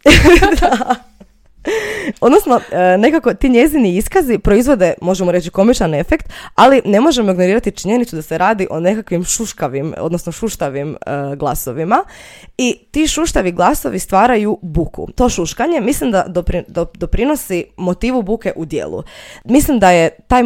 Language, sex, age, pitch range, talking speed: Croatian, female, 20-39, 165-235 Hz, 125 wpm